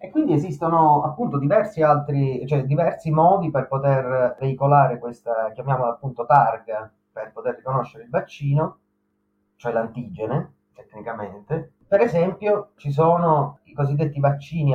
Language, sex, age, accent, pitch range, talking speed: Italian, male, 30-49, native, 120-160 Hz, 125 wpm